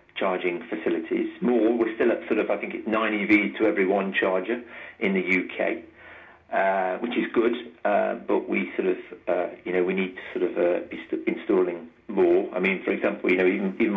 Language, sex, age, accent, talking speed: English, male, 40-59, British, 210 wpm